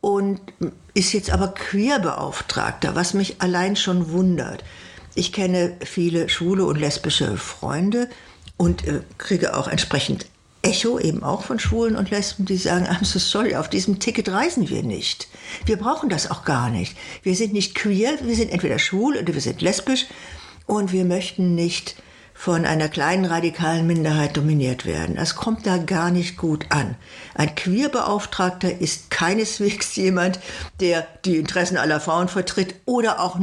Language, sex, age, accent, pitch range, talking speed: German, female, 60-79, German, 170-205 Hz, 160 wpm